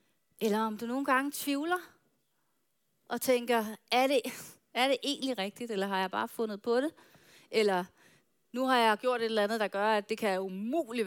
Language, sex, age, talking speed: Danish, female, 30-49, 185 wpm